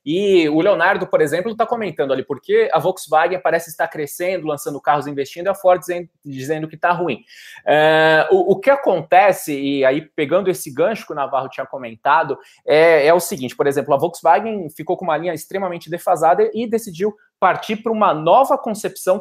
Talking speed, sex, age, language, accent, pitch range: 185 wpm, male, 20-39, Portuguese, Brazilian, 150-210 Hz